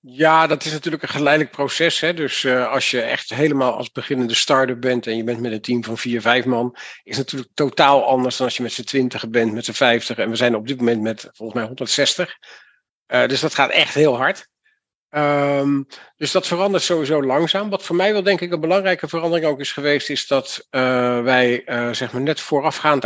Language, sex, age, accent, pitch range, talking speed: Dutch, male, 50-69, Dutch, 120-145 Hz, 225 wpm